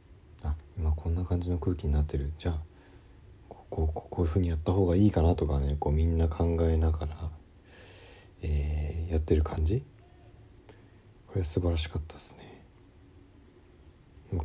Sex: male